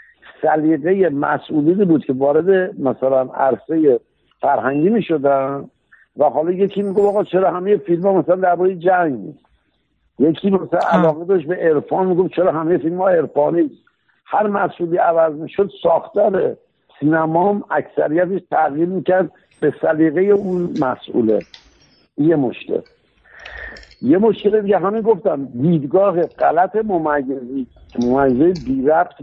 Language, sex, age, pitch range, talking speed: Persian, male, 60-79, 140-185 Hz, 125 wpm